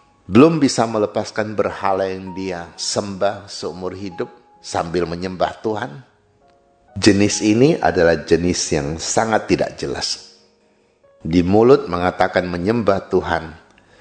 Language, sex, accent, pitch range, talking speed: Indonesian, male, native, 85-110 Hz, 105 wpm